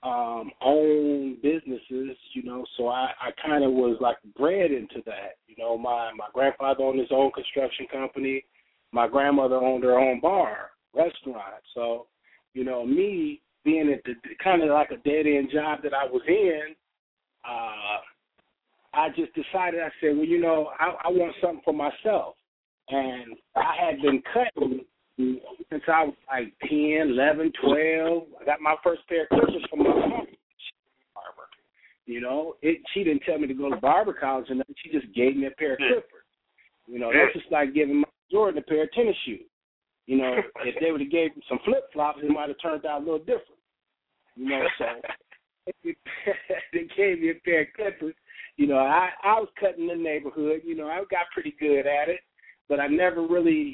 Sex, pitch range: male, 135-170 Hz